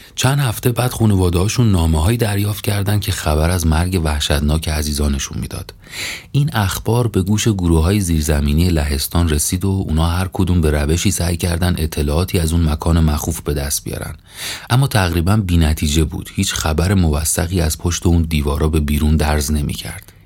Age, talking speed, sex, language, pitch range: 30-49, 160 wpm, male, Persian, 75-100 Hz